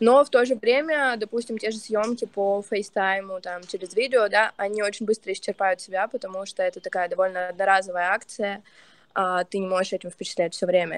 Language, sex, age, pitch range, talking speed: Russian, female, 20-39, 185-220 Hz, 190 wpm